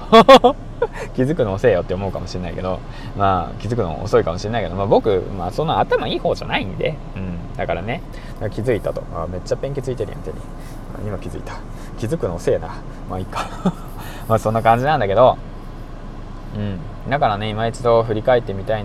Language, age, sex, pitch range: Japanese, 20-39, male, 100-140 Hz